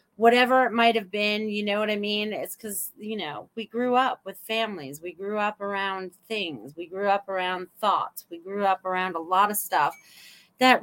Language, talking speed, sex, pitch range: English, 210 wpm, female, 190-235 Hz